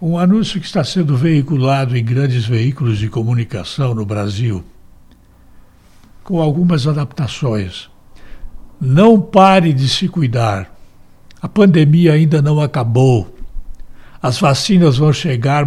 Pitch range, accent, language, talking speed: 110-170 Hz, Brazilian, Portuguese, 115 wpm